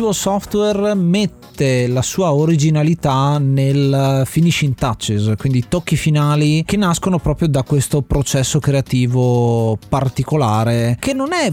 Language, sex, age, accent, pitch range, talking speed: Italian, male, 30-49, native, 125-155 Hz, 115 wpm